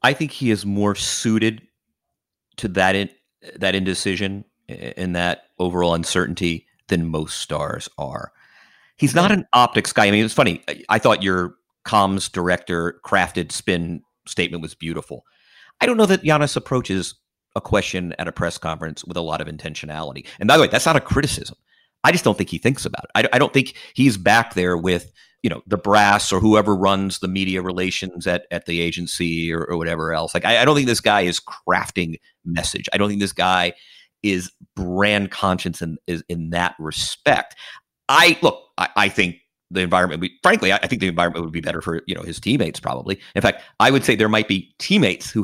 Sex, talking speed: male, 205 wpm